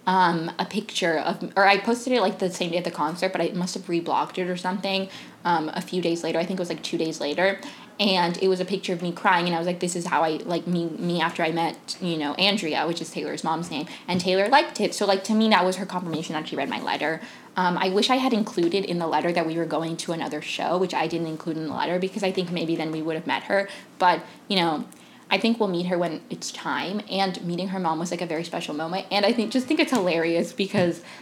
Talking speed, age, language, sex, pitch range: 280 wpm, 10-29, English, female, 165-200 Hz